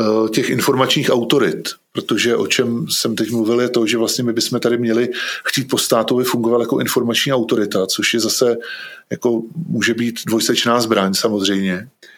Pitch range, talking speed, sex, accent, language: 110-120 Hz, 160 wpm, male, native, Czech